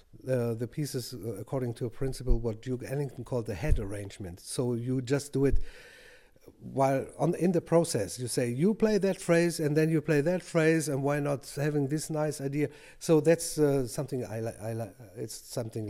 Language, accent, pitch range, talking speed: English, German, 125-155 Hz, 200 wpm